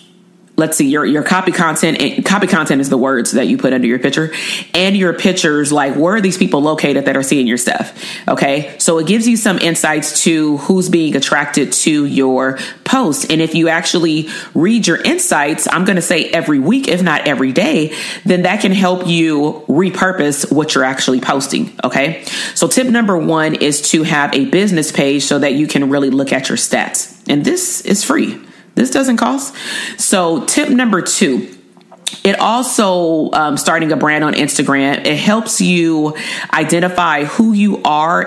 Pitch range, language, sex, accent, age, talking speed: 150-200 Hz, English, female, American, 30-49, 185 wpm